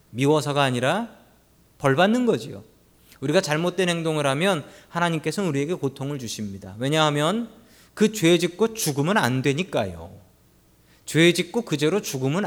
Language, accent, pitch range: Korean, native, 120-195 Hz